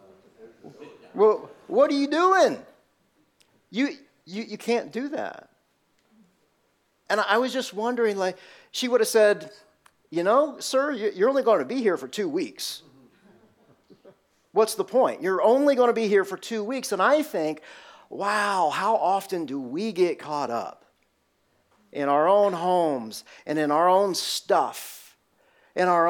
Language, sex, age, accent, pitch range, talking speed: English, male, 40-59, American, 155-230 Hz, 155 wpm